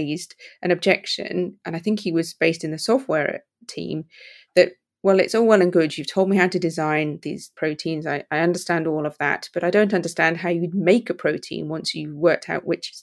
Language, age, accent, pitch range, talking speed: English, 30-49, British, 160-185 Hz, 225 wpm